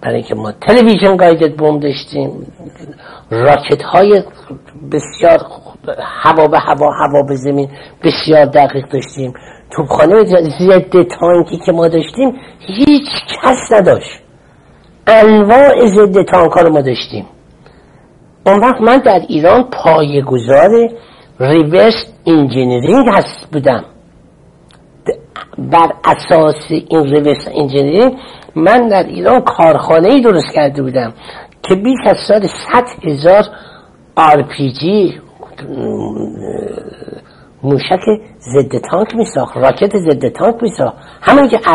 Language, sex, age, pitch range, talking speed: Persian, male, 60-79, 145-205 Hz, 110 wpm